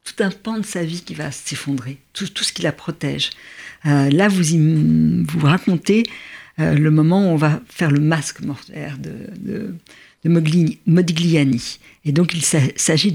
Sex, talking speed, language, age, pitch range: female, 180 wpm, French, 60-79, 155-210 Hz